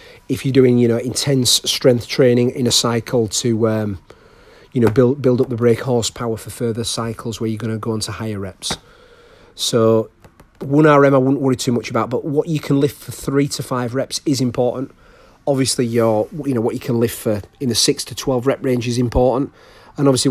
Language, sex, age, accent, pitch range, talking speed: English, male, 40-59, British, 115-135 Hz, 215 wpm